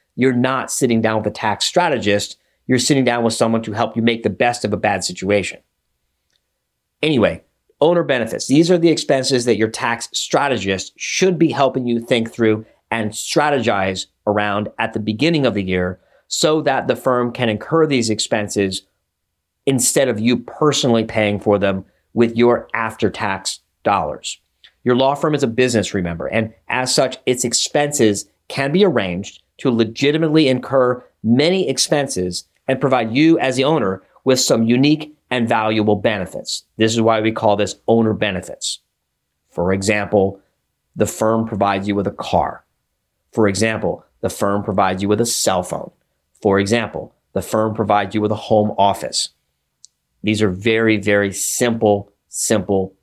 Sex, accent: male, American